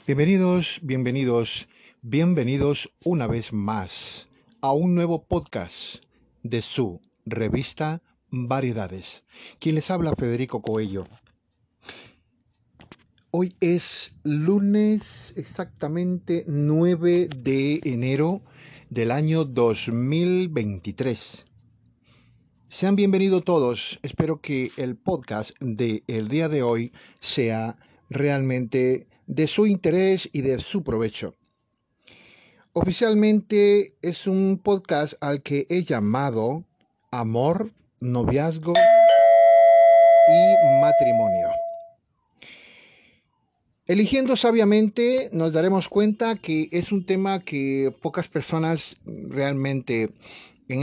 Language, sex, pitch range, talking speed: Spanish, male, 120-185 Hz, 90 wpm